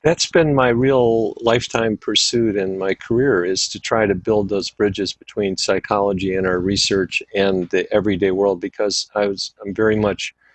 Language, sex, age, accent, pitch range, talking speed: English, male, 50-69, American, 95-105 Hz, 190 wpm